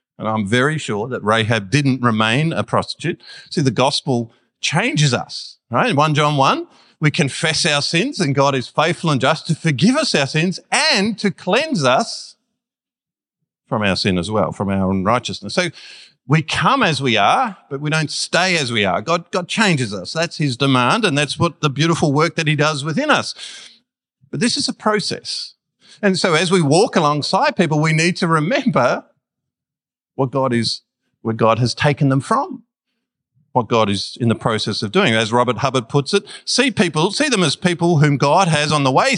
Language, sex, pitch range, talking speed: English, male, 125-175 Hz, 195 wpm